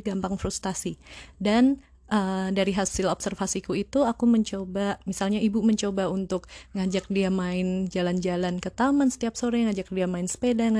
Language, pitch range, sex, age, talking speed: Indonesian, 185-230 Hz, female, 20-39, 145 wpm